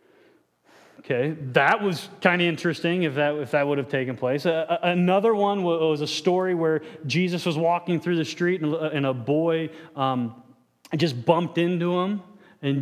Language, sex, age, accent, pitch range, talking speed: English, male, 30-49, American, 145-180 Hz, 175 wpm